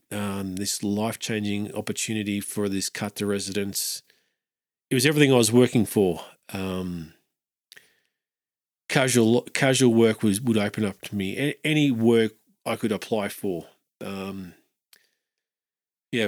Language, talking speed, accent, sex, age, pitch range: English, 125 wpm, Australian, male, 40-59, 105-125 Hz